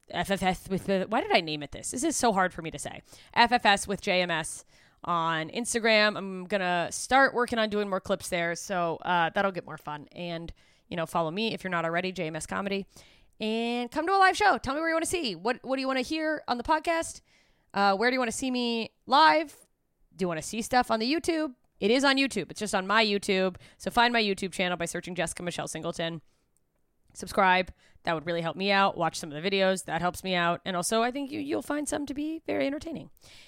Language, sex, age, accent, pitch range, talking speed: English, female, 20-39, American, 175-245 Hz, 245 wpm